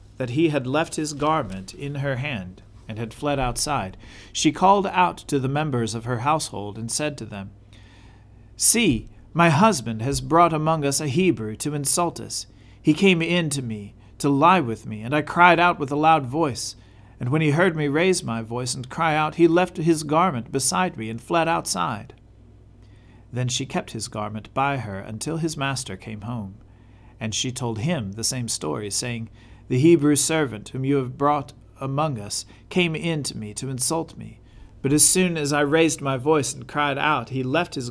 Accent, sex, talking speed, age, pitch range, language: American, male, 200 wpm, 40-59, 110-150 Hz, English